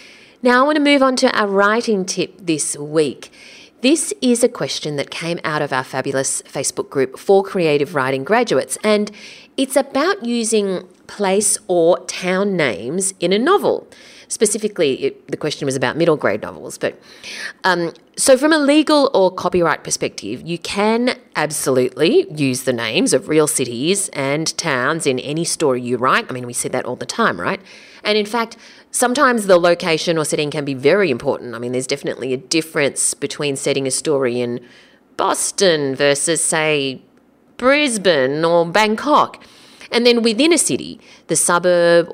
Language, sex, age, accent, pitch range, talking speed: English, female, 30-49, Australian, 145-235 Hz, 170 wpm